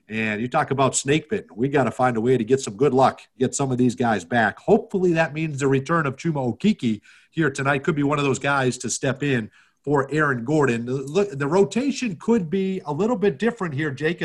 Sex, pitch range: male, 135-185 Hz